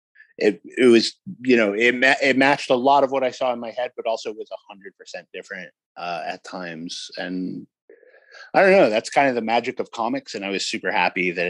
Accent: American